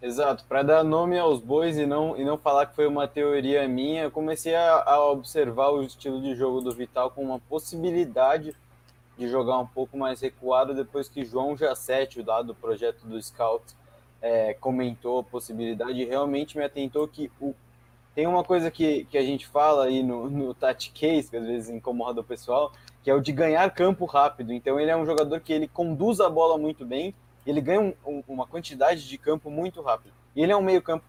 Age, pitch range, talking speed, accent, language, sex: 20-39, 125-155 Hz, 210 wpm, Brazilian, Portuguese, male